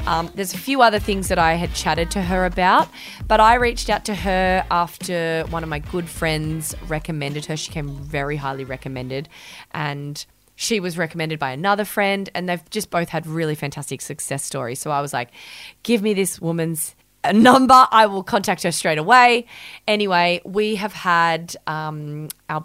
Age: 20-39